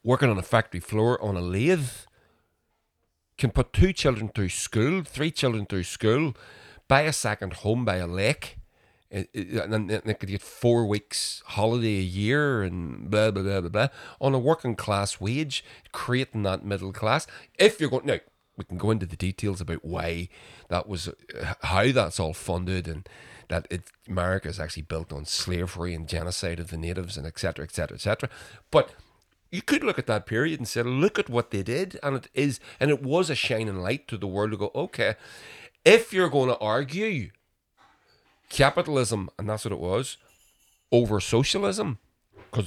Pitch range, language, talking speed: 95-125 Hz, English, 185 wpm